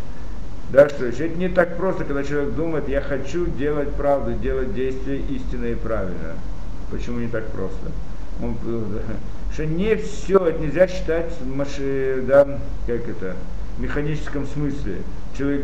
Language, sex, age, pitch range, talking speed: Russian, male, 50-69, 125-165 Hz, 125 wpm